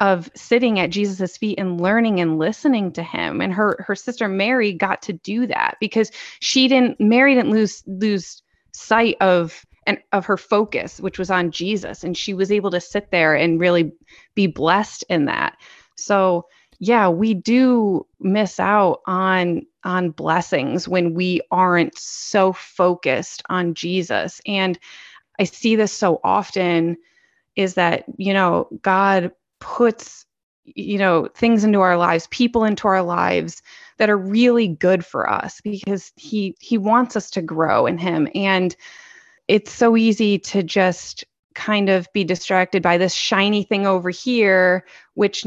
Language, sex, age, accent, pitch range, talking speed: English, female, 20-39, American, 185-220 Hz, 160 wpm